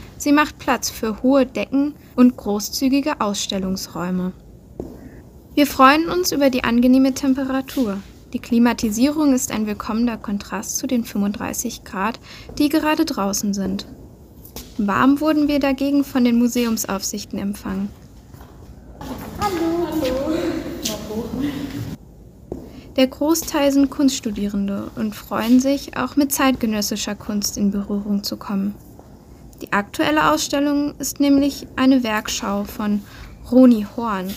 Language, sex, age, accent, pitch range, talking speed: German, female, 10-29, German, 210-275 Hz, 110 wpm